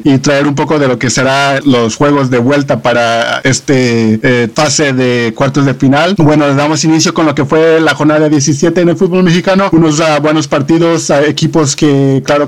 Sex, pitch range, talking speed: male, 140-155 Hz, 205 wpm